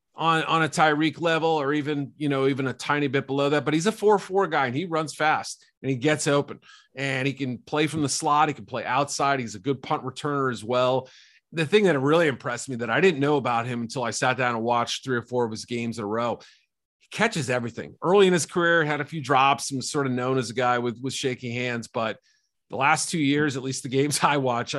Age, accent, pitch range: 30-49, American, 125-155 Hz